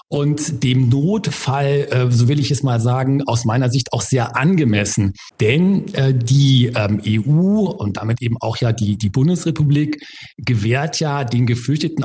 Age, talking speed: 50-69, 150 wpm